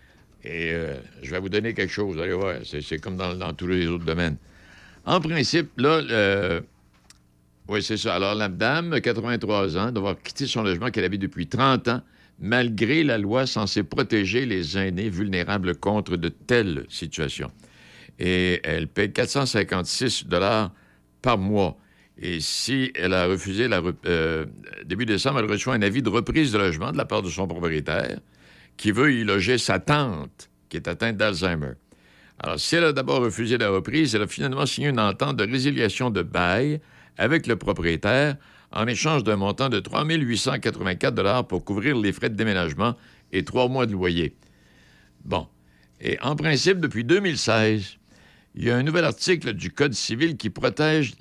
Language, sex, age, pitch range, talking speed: French, male, 60-79, 90-125 Hz, 175 wpm